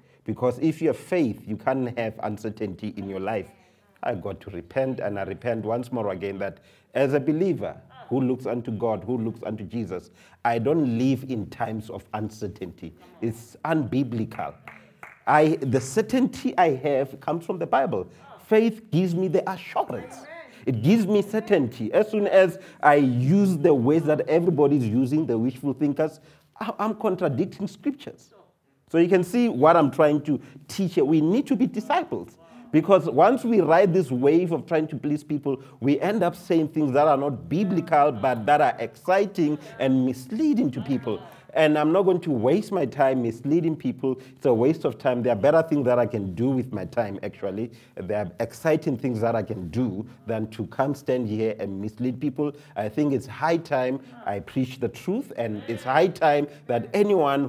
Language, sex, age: English, male, 40-59